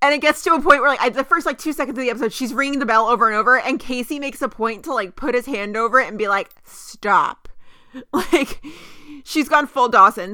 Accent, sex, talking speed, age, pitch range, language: American, female, 260 wpm, 30-49, 230-290 Hz, English